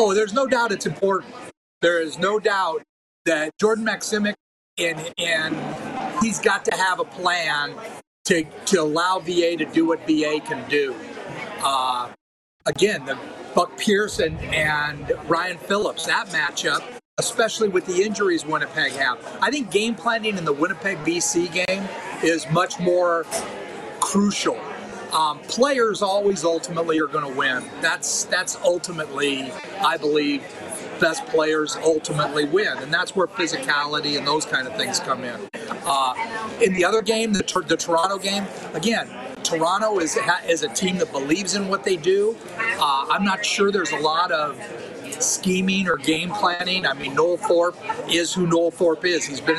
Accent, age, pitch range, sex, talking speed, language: American, 40-59, 160-210 Hz, male, 160 wpm, English